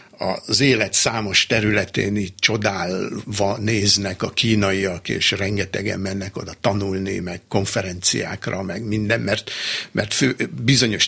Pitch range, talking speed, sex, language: 100-125 Hz, 120 wpm, male, Hungarian